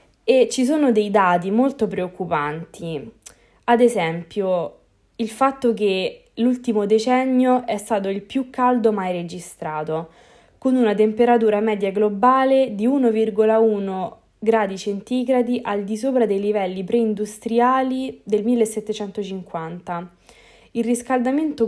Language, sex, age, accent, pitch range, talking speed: Italian, female, 20-39, native, 185-240 Hz, 110 wpm